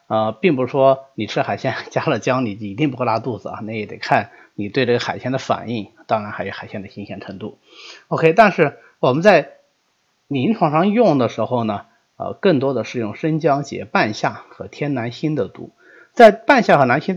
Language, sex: Chinese, male